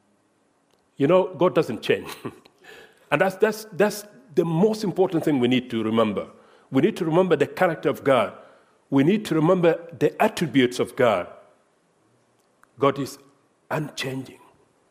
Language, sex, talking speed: English, male, 145 wpm